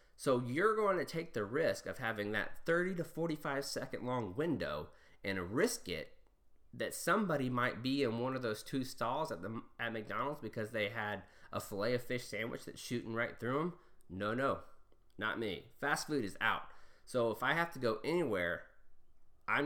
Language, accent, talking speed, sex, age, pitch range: English, American, 190 wpm, male, 30-49, 100-125 Hz